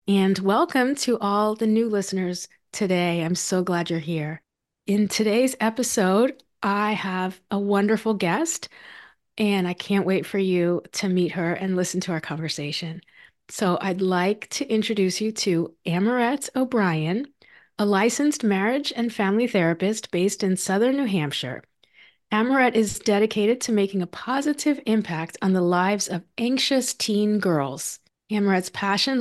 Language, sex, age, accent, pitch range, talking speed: English, female, 30-49, American, 180-230 Hz, 150 wpm